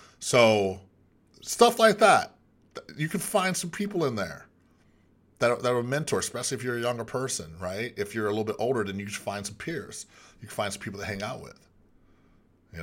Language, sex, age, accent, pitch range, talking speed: English, male, 30-49, American, 95-125 Hz, 210 wpm